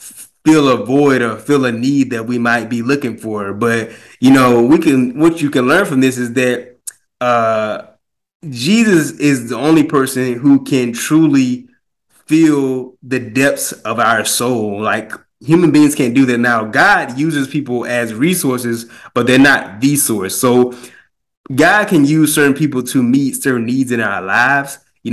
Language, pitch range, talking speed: English, 120-145 Hz, 170 wpm